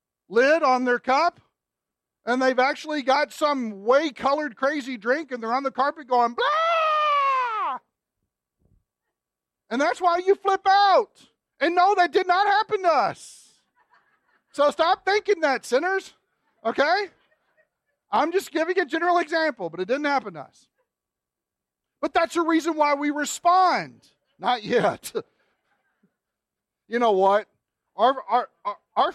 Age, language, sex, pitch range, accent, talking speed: 40-59, English, male, 225-355 Hz, American, 140 wpm